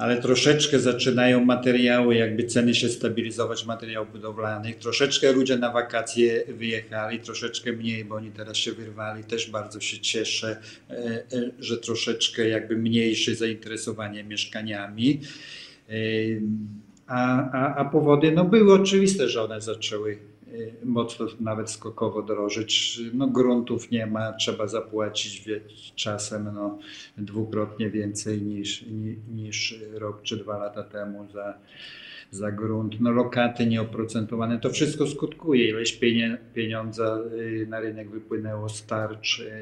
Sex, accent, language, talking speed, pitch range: male, native, Polish, 120 wpm, 110-120 Hz